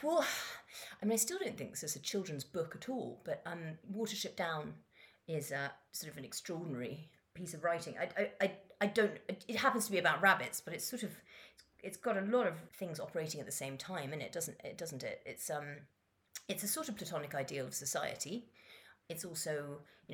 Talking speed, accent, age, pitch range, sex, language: 215 wpm, British, 30-49, 150-220 Hz, female, English